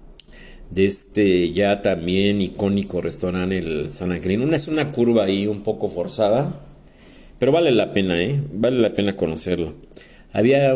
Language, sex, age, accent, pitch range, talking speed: Spanish, male, 50-69, Mexican, 85-105 Hz, 150 wpm